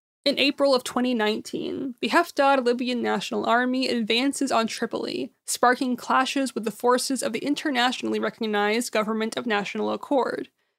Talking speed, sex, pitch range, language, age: 140 wpm, female, 225-275 Hz, English, 20-39